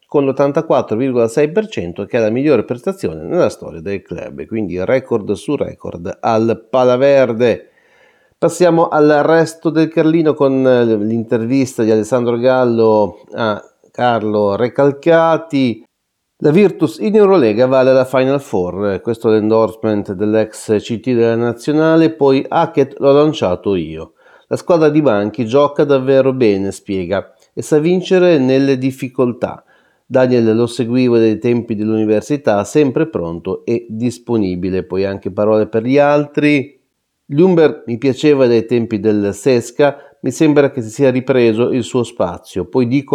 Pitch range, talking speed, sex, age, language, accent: 105-135 Hz, 135 wpm, male, 30-49, Italian, native